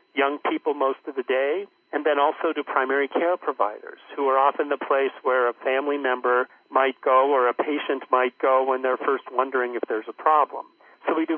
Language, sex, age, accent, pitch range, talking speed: English, male, 50-69, American, 125-150 Hz, 210 wpm